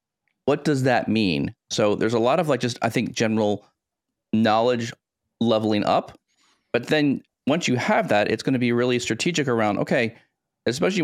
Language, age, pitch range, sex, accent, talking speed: English, 30-49, 105-130 Hz, male, American, 175 wpm